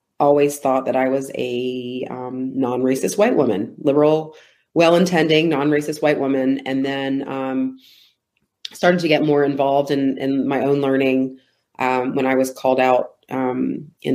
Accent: American